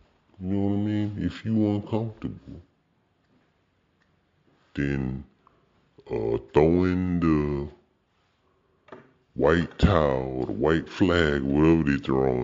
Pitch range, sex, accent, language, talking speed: 65-90 Hz, female, American, English, 105 wpm